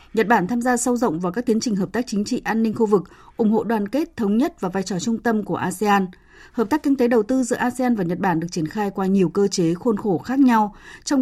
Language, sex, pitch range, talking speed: Vietnamese, female, 180-230 Hz, 290 wpm